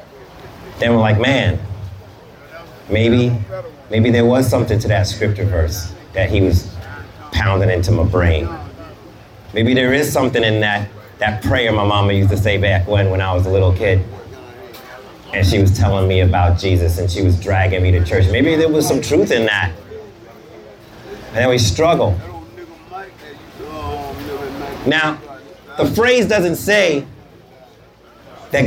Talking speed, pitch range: 150 wpm, 95-125 Hz